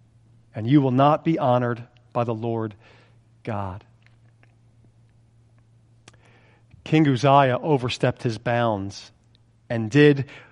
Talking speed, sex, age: 95 wpm, male, 40-59